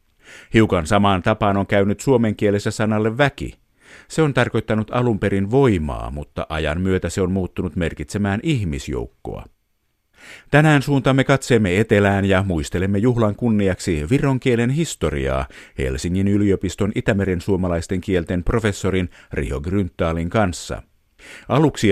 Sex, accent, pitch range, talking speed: male, native, 85-110 Hz, 115 wpm